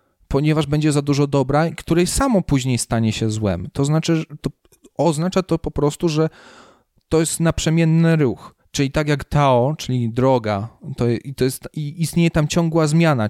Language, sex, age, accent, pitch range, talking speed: Polish, male, 40-59, native, 130-160 Hz, 170 wpm